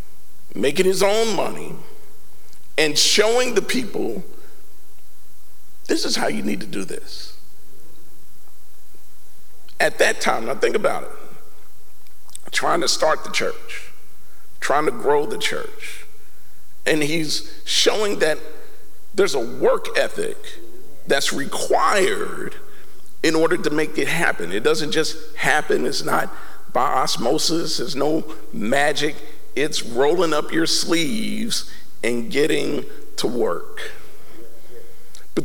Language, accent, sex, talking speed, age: English, American, male, 120 wpm, 50-69